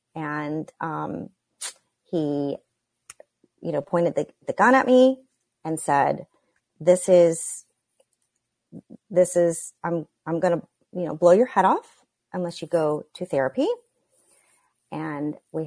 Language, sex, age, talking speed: English, female, 30-49, 130 wpm